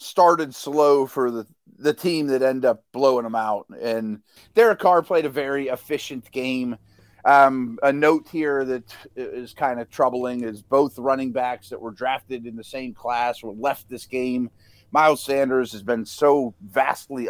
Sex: male